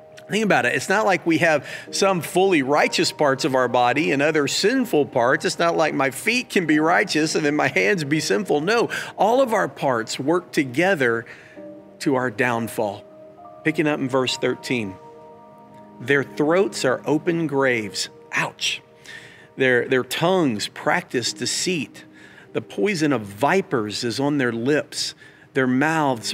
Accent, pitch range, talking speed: American, 125-170 Hz, 155 wpm